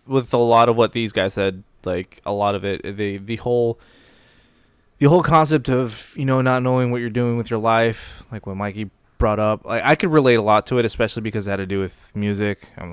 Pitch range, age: 100-120 Hz, 20-39